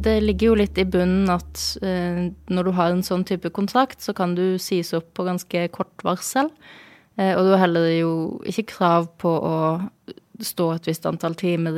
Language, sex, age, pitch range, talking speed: English, female, 20-39, 165-190 Hz, 190 wpm